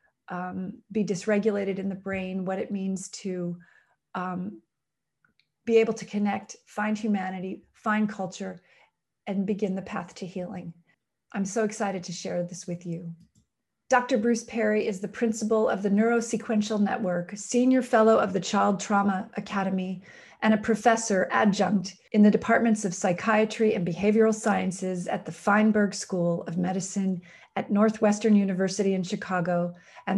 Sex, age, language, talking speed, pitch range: female, 40-59, English, 145 wpm, 185-215 Hz